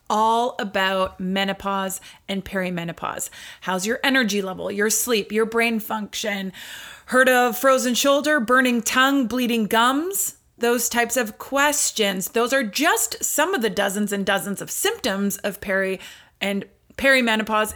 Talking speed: 140 wpm